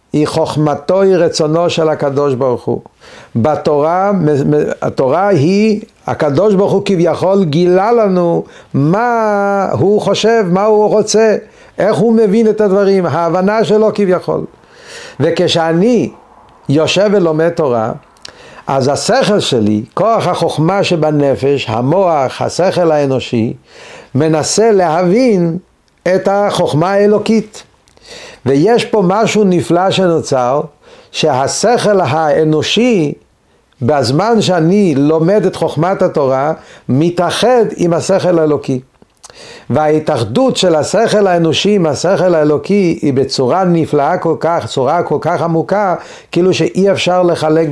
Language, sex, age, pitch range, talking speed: Hebrew, male, 60-79, 155-205 Hz, 110 wpm